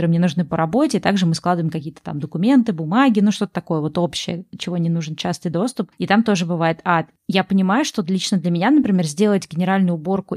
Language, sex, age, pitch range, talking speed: Russian, female, 20-39, 170-195 Hz, 210 wpm